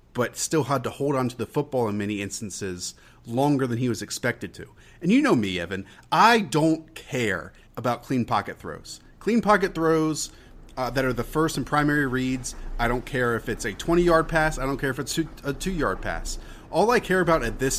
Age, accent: 30-49, American